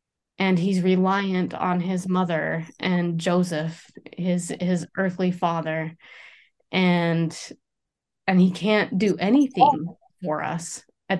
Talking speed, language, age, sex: 115 wpm, English, 30-49, female